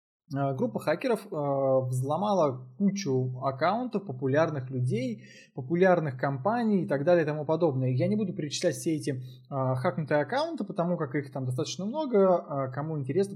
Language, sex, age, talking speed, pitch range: Russian, male, 20-39, 155 wpm, 135-190 Hz